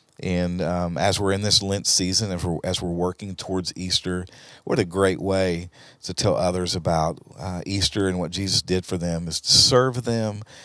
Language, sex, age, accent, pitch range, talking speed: English, male, 50-69, American, 90-115 Hz, 195 wpm